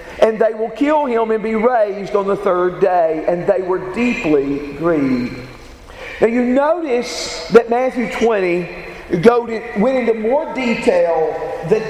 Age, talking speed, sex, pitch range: 50-69, 140 wpm, male, 165-240 Hz